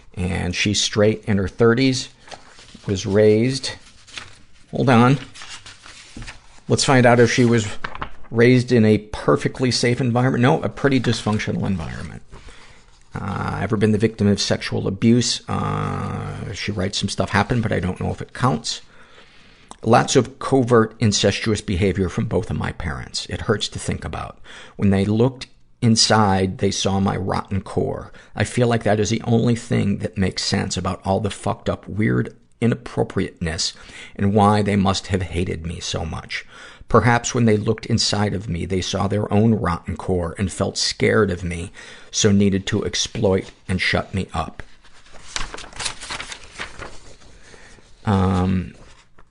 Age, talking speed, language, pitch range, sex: 50-69, 155 wpm, English, 95-115 Hz, male